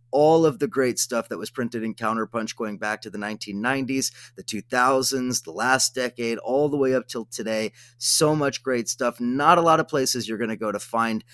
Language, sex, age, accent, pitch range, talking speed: English, male, 30-49, American, 110-135 Hz, 215 wpm